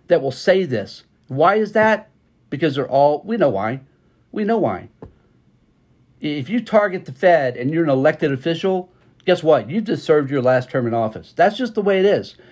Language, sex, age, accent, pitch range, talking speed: English, male, 50-69, American, 130-175 Hz, 200 wpm